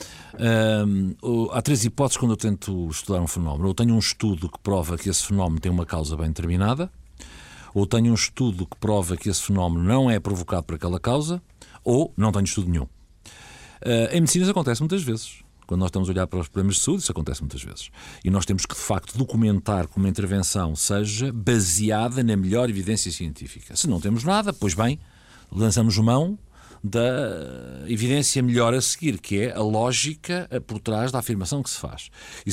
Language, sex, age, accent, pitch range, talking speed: Portuguese, male, 50-69, Portuguese, 95-130 Hz, 190 wpm